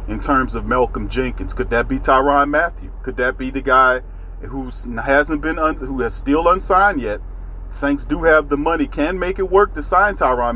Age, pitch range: 40-59, 115-140 Hz